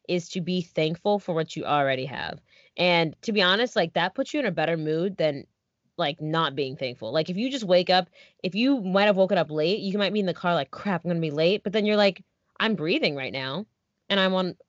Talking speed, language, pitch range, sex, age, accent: 250 wpm, English, 160-210 Hz, female, 20-39, American